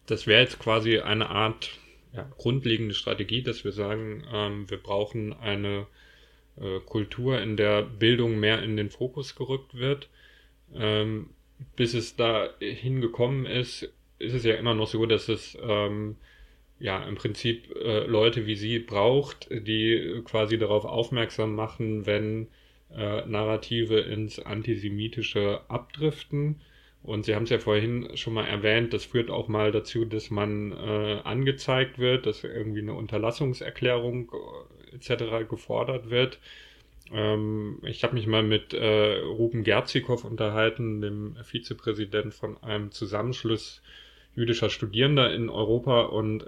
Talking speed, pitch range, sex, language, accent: 135 wpm, 105-120 Hz, male, German, German